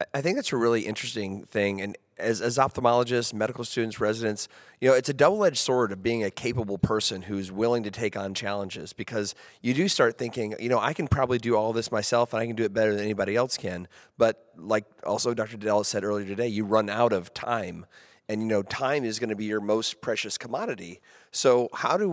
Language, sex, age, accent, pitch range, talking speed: English, male, 30-49, American, 110-140 Hz, 225 wpm